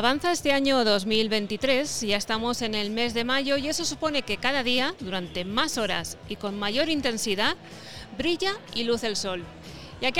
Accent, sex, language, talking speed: Spanish, female, Spanish, 180 wpm